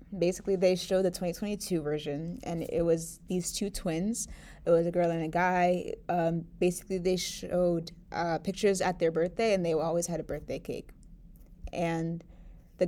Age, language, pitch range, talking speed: 20-39, English, 170-210 Hz, 170 wpm